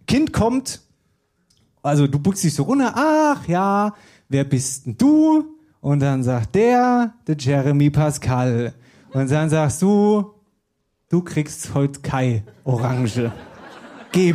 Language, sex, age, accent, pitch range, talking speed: German, male, 30-49, German, 140-215 Hz, 130 wpm